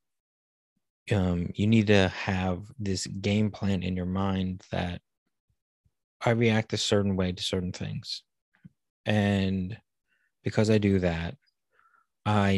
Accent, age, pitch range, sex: American, 30-49, 95-110 Hz, male